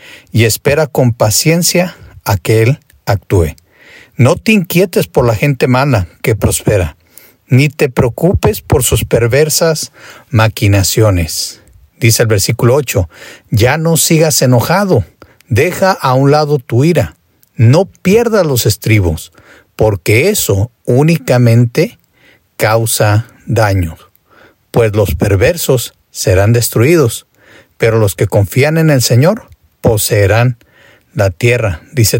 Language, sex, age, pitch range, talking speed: Spanish, male, 50-69, 105-150 Hz, 115 wpm